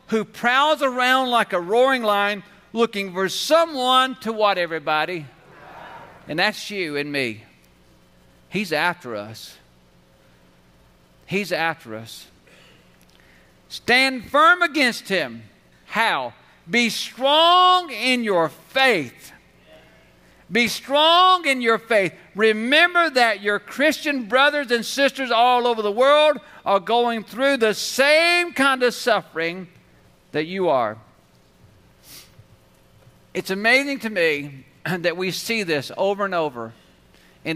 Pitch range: 160-250 Hz